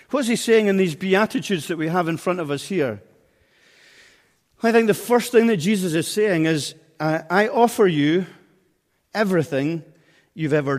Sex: male